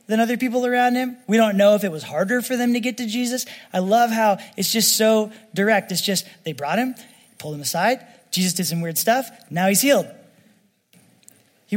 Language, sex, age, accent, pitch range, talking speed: English, male, 20-39, American, 180-220 Hz, 215 wpm